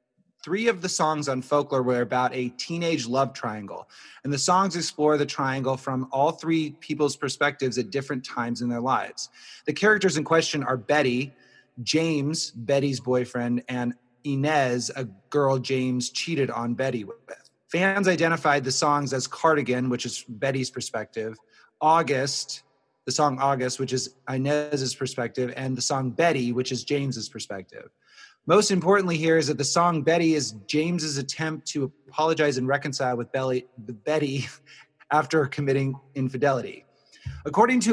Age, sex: 30-49, male